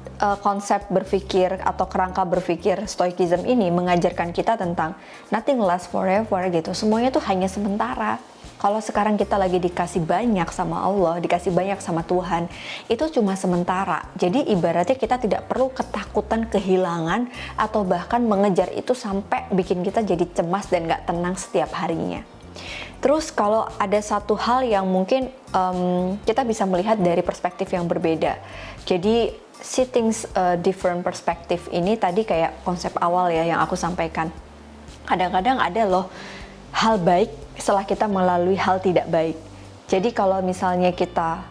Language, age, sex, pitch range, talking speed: Indonesian, 20-39, female, 175-205 Hz, 145 wpm